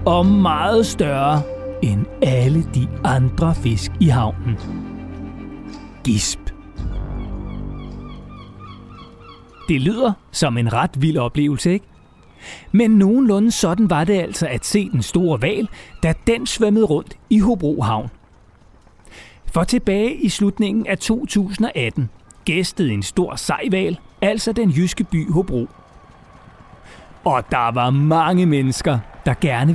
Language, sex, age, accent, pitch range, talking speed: Danish, male, 30-49, native, 125-200 Hz, 115 wpm